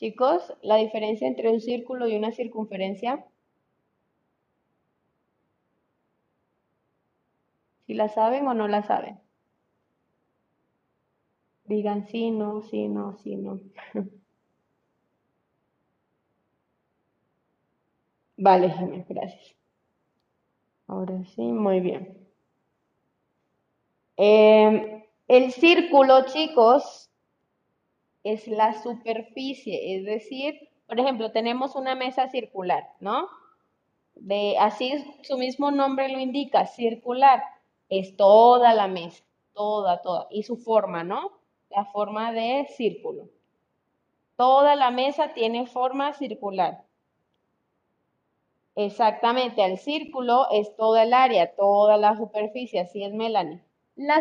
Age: 20-39